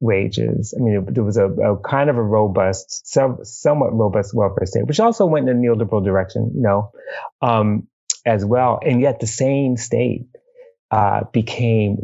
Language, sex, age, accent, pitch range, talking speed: English, male, 30-49, American, 105-125 Hz, 175 wpm